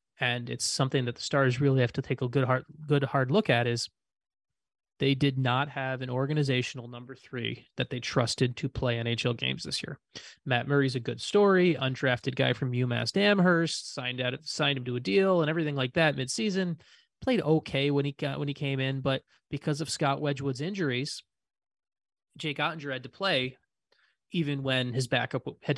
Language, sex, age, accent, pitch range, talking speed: English, male, 20-39, American, 130-150 Hz, 190 wpm